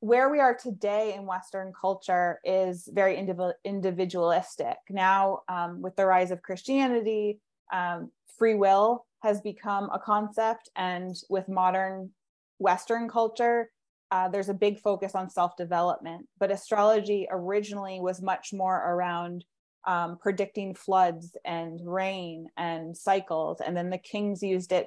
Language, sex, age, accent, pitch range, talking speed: English, female, 20-39, American, 180-210 Hz, 135 wpm